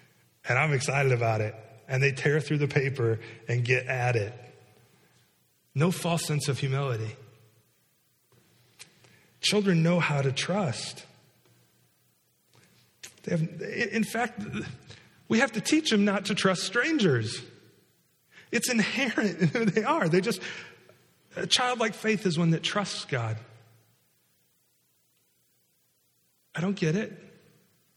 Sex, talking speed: male, 125 wpm